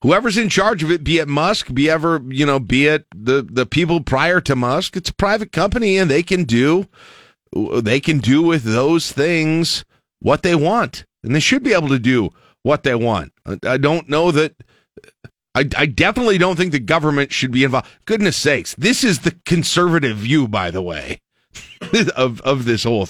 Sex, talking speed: male, 195 wpm